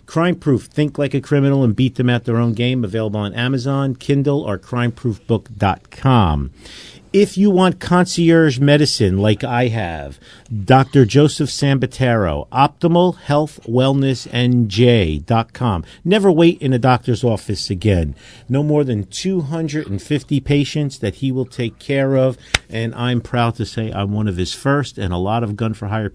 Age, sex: 50-69, male